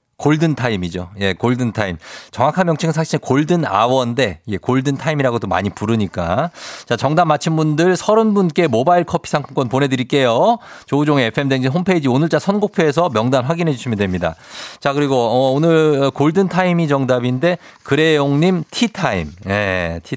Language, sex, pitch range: Korean, male, 110-175 Hz